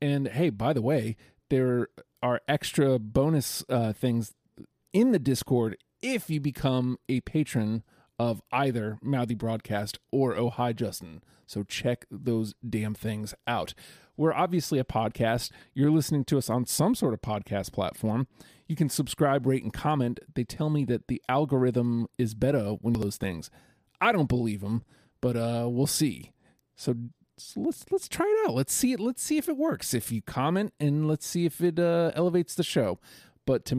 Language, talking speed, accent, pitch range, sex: English, 185 wpm, American, 115-150 Hz, male